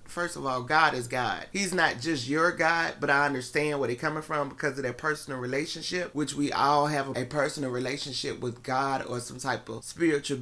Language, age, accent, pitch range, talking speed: English, 30-49, American, 130-165 Hz, 215 wpm